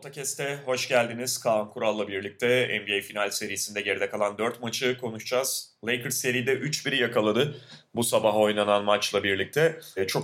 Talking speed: 140 wpm